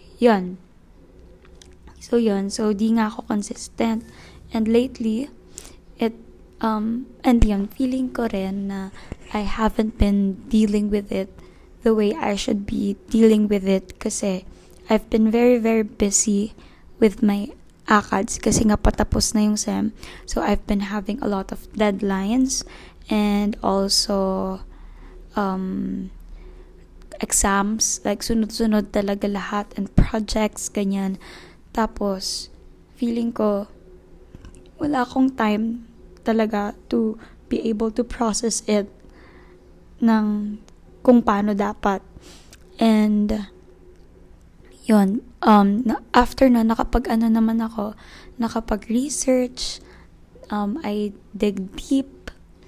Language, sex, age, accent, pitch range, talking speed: Filipino, female, 20-39, native, 200-230 Hz, 110 wpm